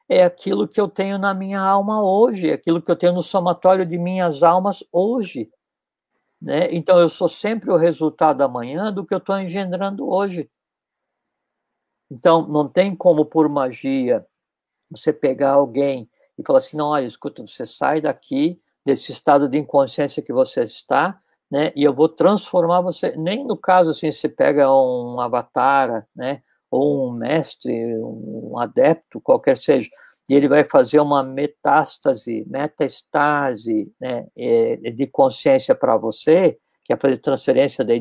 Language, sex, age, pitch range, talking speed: Portuguese, male, 60-79, 145-195 Hz, 155 wpm